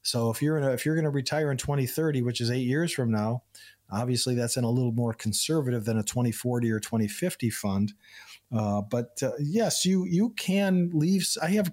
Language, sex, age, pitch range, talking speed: English, male, 40-59, 115-145 Hz, 200 wpm